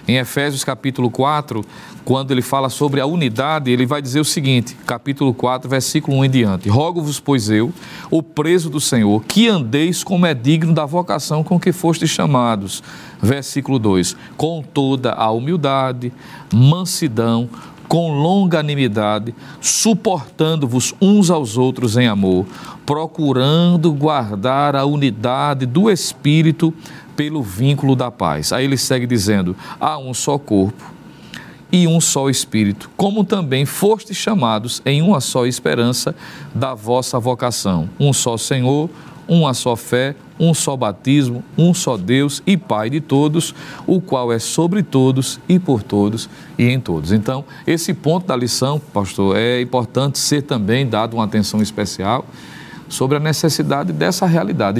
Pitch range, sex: 120-160 Hz, male